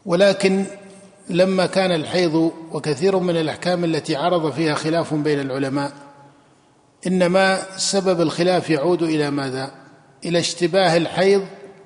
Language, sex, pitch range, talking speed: Arabic, male, 155-185 Hz, 110 wpm